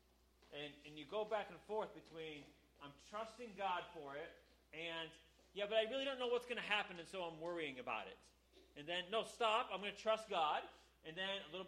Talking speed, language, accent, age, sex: 220 wpm, English, American, 30-49, male